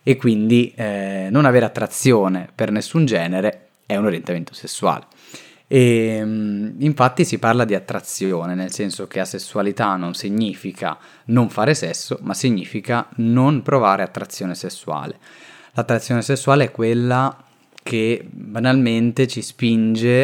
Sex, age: male, 20-39